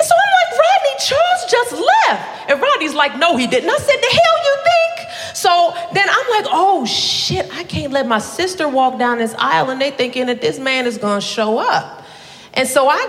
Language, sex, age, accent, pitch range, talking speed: English, female, 30-49, American, 195-285 Hz, 195 wpm